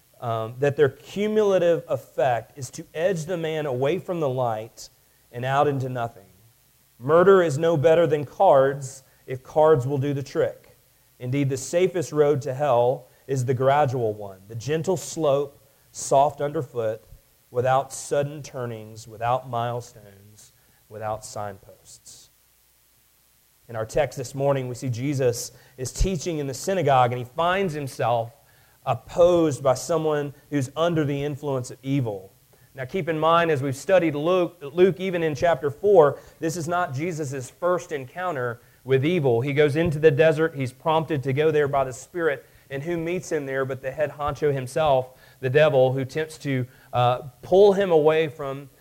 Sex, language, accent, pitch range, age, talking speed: male, English, American, 125-160 Hz, 40-59, 160 wpm